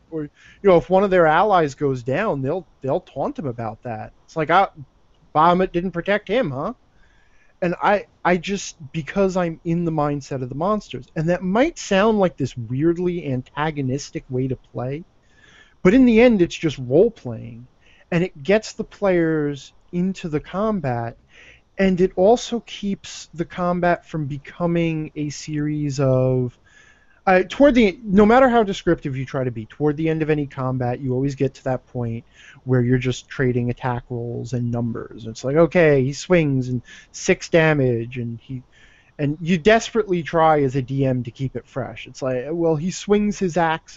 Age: 20-39